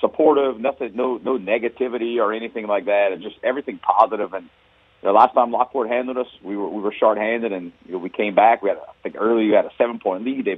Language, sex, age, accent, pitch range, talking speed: English, male, 40-59, American, 100-125 Hz, 250 wpm